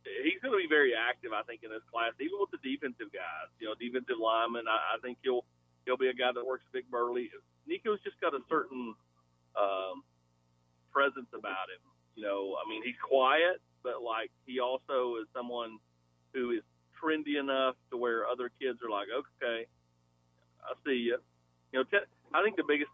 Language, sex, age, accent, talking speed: English, male, 40-59, American, 190 wpm